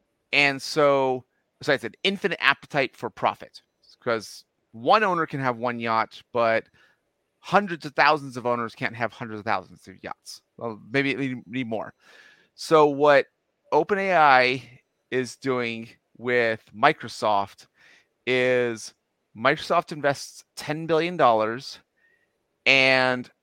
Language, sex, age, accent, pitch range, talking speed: English, male, 30-49, American, 120-145 Hz, 130 wpm